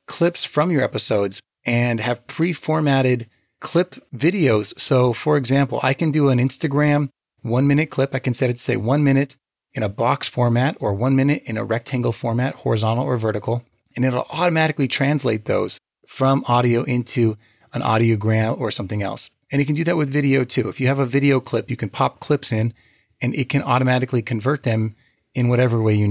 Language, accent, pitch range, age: English, American, 115-140 Hz, 30-49